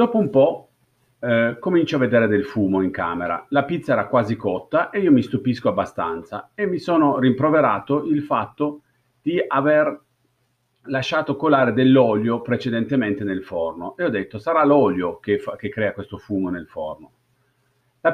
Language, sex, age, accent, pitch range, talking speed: Italian, male, 50-69, native, 105-140 Hz, 155 wpm